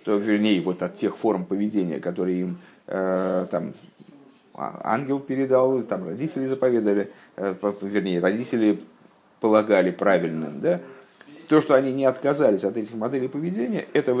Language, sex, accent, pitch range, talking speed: Russian, male, native, 95-135 Hz, 145 wpm